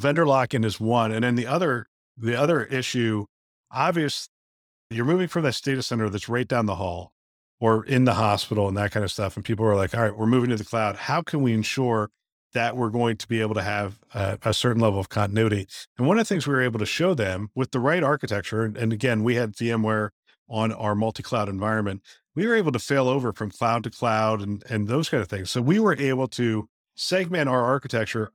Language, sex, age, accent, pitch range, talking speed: English, male, 50-69, American, 105-130 Hz, 230 wpm